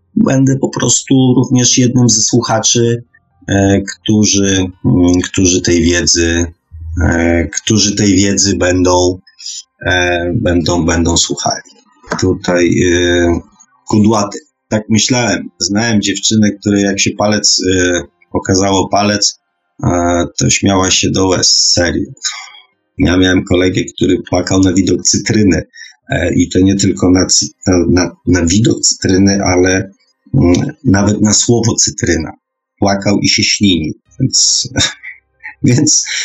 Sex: male